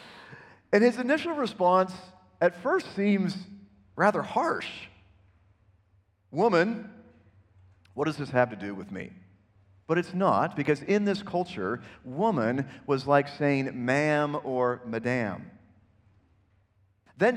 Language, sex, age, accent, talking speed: English, male, 40-59, American, 115 wpm